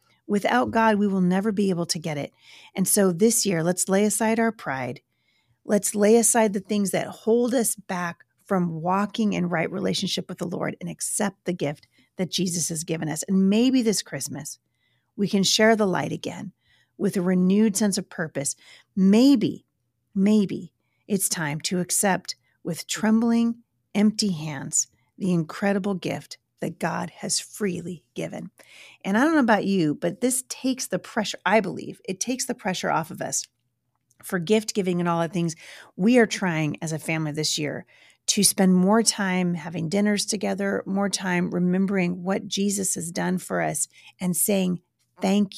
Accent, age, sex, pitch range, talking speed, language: American, 40-59, female, 170-210 Hz, 175 wpm, English